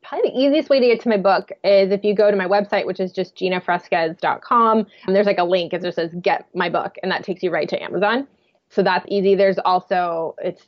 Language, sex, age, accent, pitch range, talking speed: English, female, 20-39, American, 175-205 Hz, 240 wpm